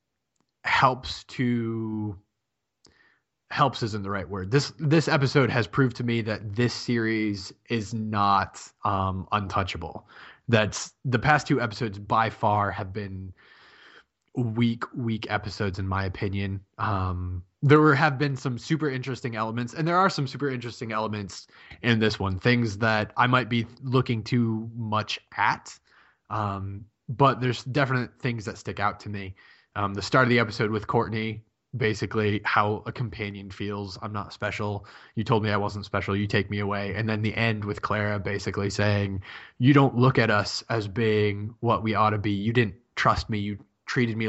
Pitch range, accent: 100-120 Hz, American